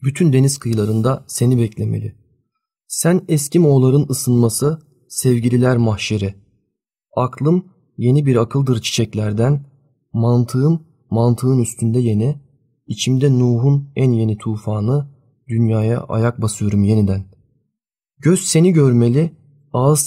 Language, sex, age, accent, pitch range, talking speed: Turkish, male, 30-49, native, 115-140 Hz, 100 wpm